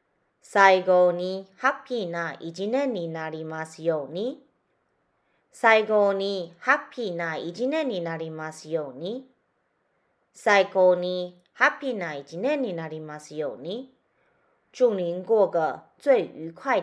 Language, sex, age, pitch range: Japanese, female, 30-49, 165-240 Hz